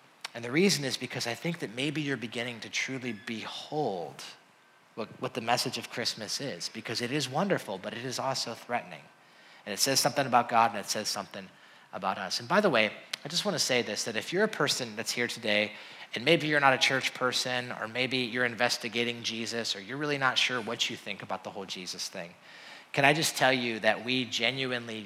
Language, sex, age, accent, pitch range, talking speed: English, male, 30-49, American, 115-135 Hz, 225 wpm